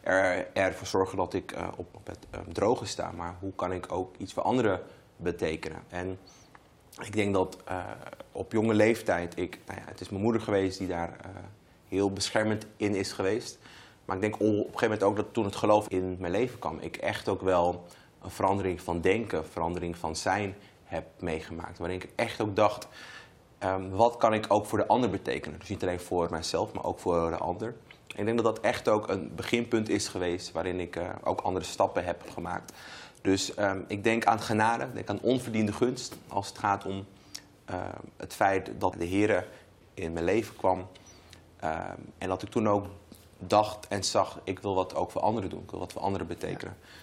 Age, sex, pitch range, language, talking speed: 30-49, male, 90-105 Hz, Dutch, 210 wpm